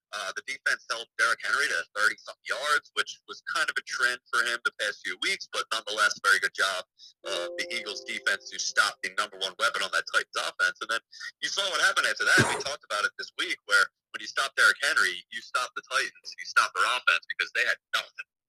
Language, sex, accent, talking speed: English, male, American, 235 wpm